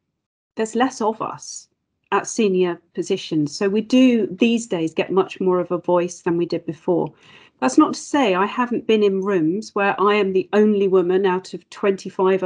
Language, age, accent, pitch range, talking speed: English, 40-59, British, 185-230 Hz, 195 wpm